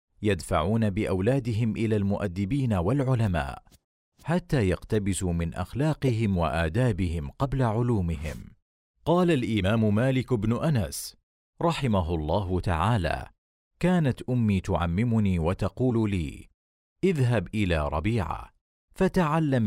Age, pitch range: 40-59, 90-125 Hz